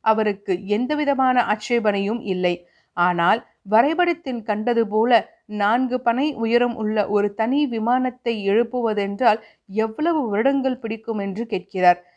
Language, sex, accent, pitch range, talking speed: Tamil, female, native, 200-240 Hz, 105 wpm